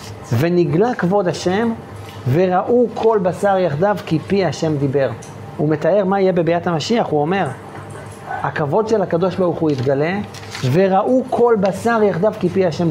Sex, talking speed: male, 150 wpm